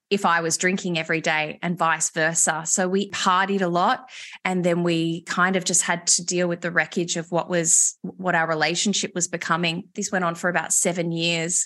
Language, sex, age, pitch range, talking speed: English, female, 20-39, 170-205 Hz, 210 wpm